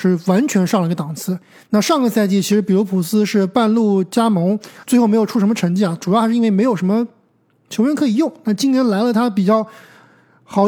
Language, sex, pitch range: Chinese, male, 190-235 Hz